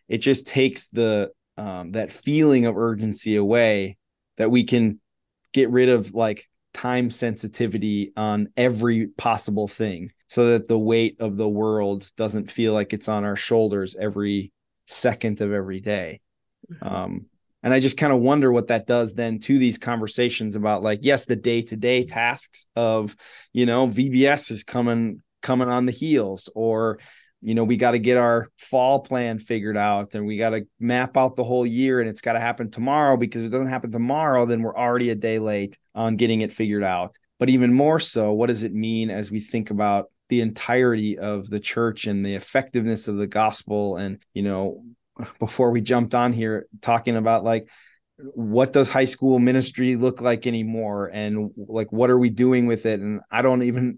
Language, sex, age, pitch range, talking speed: English, male, 20-39, 105-125 Hz, 190 wpm